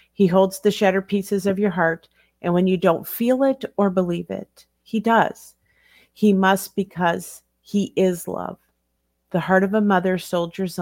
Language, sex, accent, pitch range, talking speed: English, female, American, 170-195 Hz, 170 wpm